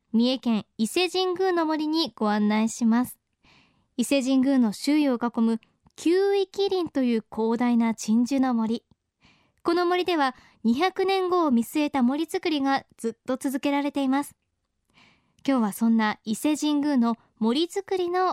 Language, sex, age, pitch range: Japanese, male, 20-39, 240-340 Hz